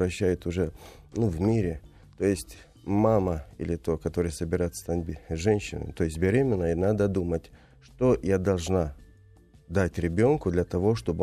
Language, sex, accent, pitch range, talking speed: Russian, male, native, 85-105 Hz, 145 wpm